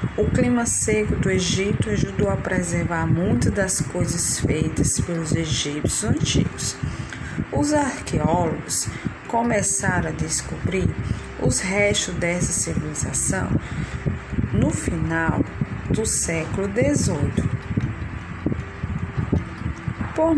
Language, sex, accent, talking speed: Portuguese, female, Brazilian, 90 wpm